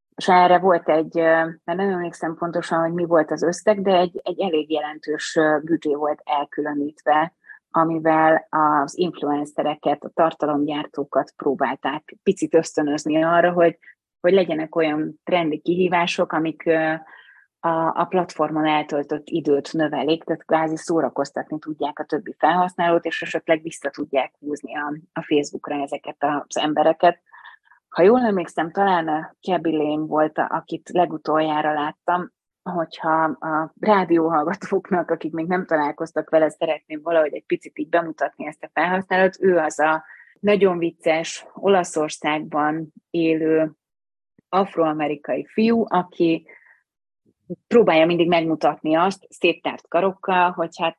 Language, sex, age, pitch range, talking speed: Hungarian, female, 30-49, 155-175 Hz, 125 wpm